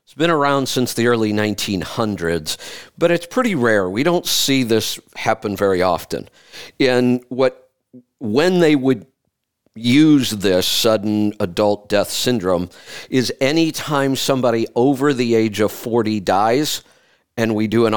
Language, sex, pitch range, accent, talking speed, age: English, male, 105-135 Hz, American, 135 wpm, 50-69